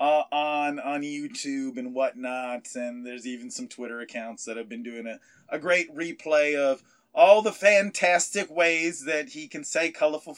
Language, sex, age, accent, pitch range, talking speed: English, male, 30-49, American, 135-185 Hz, 175 wpm